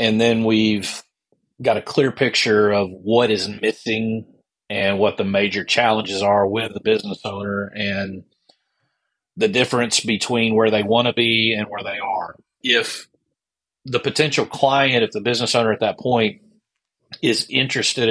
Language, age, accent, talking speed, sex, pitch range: English, 40-59, American, 155 wpm, male, 105-125 Hz